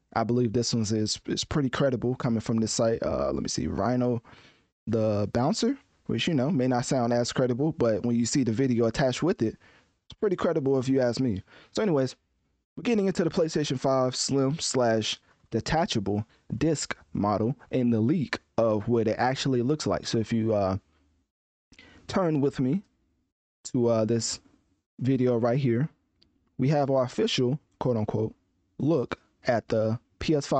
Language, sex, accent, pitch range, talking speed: English, male, American, 110-140 Hz, 175 wpm